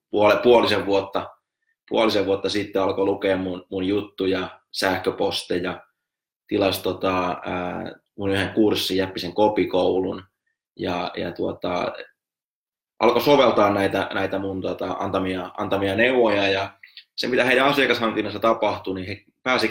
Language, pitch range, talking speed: Finnish, 95-110 Hz, 115 wpm